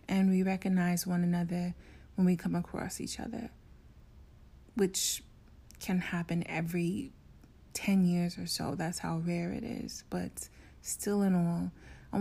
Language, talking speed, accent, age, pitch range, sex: English, 145 wpm, American, 30-49, 175-200 Hz, female